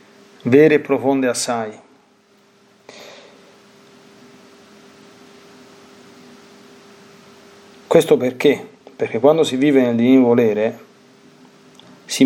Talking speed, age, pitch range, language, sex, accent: 70 wpm, 40-59, 120-150 Hz, Italian, male, native